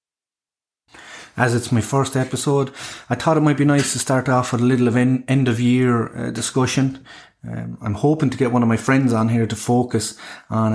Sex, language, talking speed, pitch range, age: male, English, 205 wpm, 105-125 Hz, 30-49